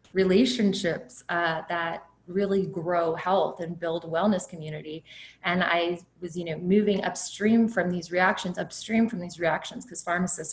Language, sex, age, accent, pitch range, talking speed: English, female, 20-39, American, 170-205 Hz, 150 wpm